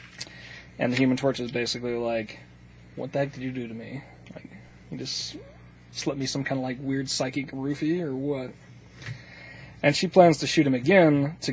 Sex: male